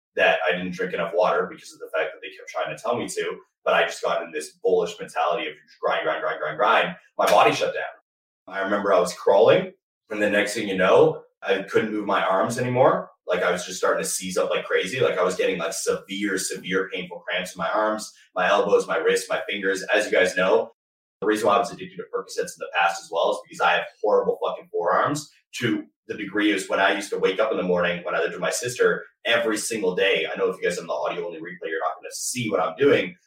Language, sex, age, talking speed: English, male, 30-49, 265 wpm